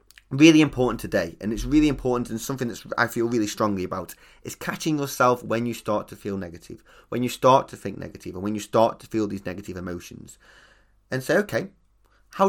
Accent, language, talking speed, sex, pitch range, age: British, English, 205 wpm, male, 105-140 Hz, 20-39